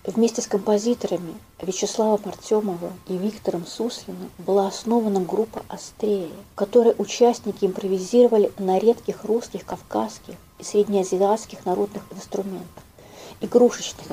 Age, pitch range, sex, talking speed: 40-59, 190-230 Hz, female, 105 wpm